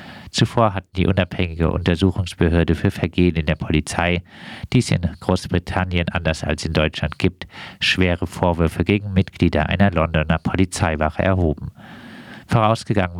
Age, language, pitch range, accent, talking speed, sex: 50-69, German, 85-100 Hz, German, 125 wpm, male